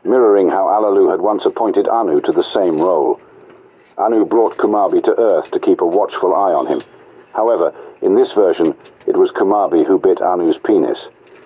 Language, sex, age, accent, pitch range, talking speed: English, male, 50-69, British, 370-420 Hz, 180 wpm